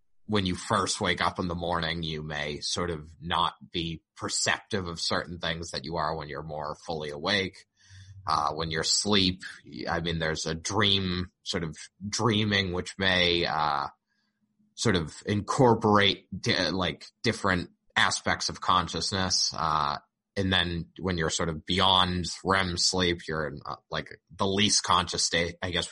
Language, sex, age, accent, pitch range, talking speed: English, male, 20-39, American, 80-105 Hz, 160 wpm